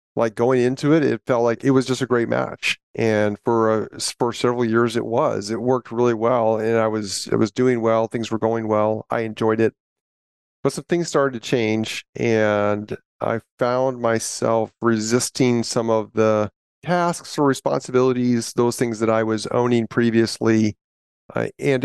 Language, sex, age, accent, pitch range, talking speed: English, male, 40-59, American, 110-125 Hz, 180 wpm